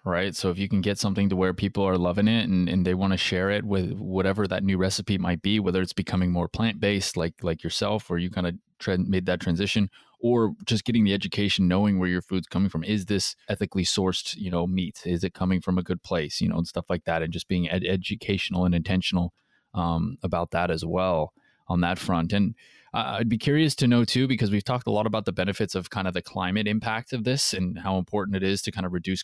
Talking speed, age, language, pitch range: 250 wpm, 20-39, English, 90-105 Hz